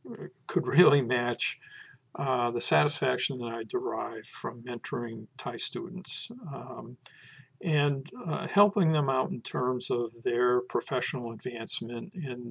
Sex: male